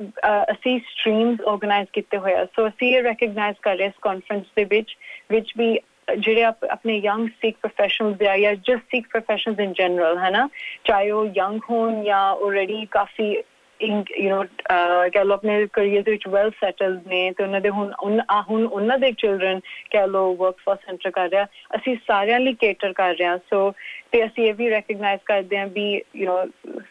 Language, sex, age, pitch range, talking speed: Punjabi, female, 30-49, 190-225 Hz, 165 wpm